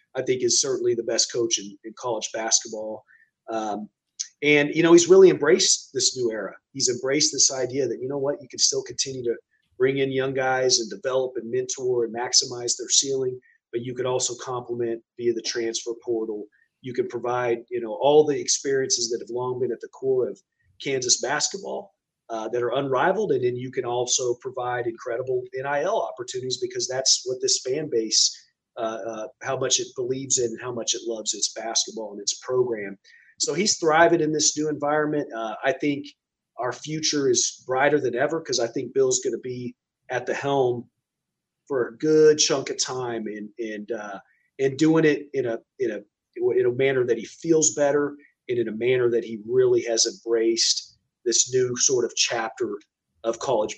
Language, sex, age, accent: English, male, 30-49, American